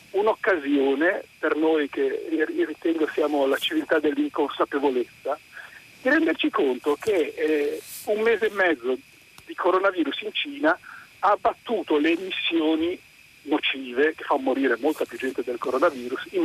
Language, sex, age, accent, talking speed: Italian, male, 50-69, native, 135 wpm